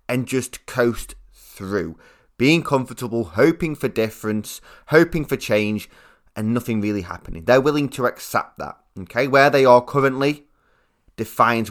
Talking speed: 140 wpm